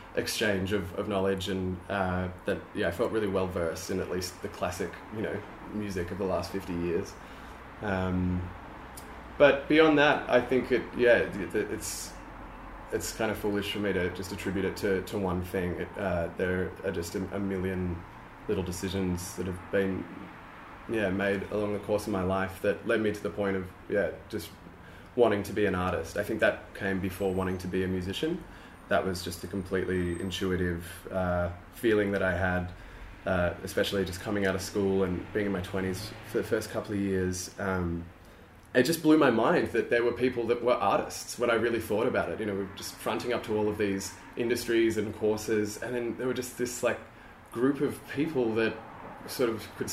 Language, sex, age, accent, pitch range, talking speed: English, male, 20-39, Australian, 90-110 Hz, 205 wpm